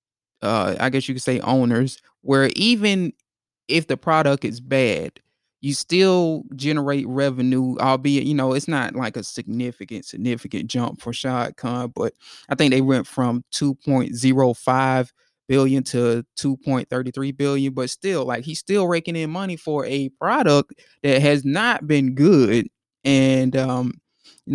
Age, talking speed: 20-39, 145 wpm